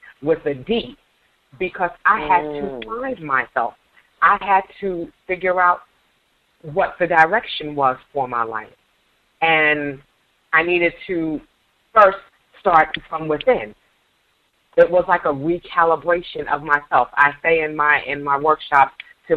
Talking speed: 135 wpm